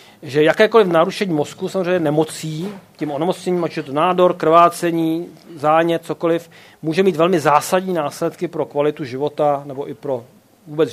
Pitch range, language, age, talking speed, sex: 150-180 Hz, Czech, 40-59, 150 wpm, male